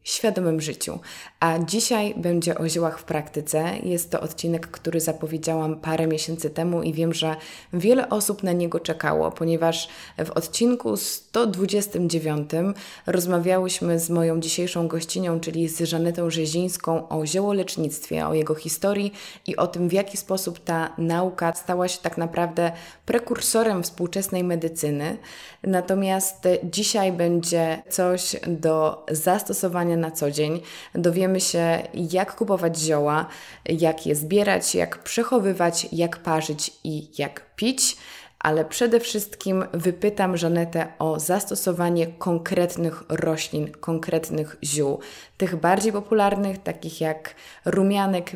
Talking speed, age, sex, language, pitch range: 125 wpm, 20-39, female, Polish, 160-190 Hz